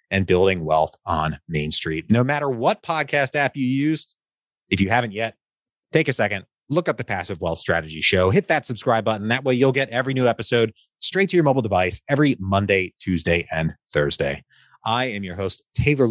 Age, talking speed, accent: 30-49, 200 wpm, American